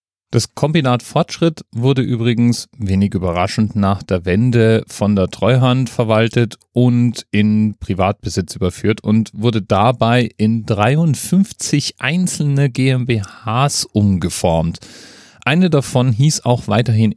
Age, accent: 40-59, German